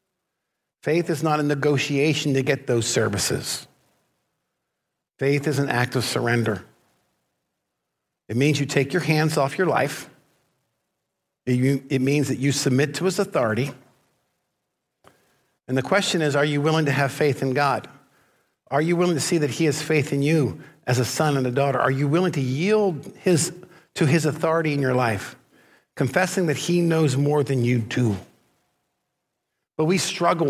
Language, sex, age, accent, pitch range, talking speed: English, male, 50-69, American, 130-155 Hz, 165 wpm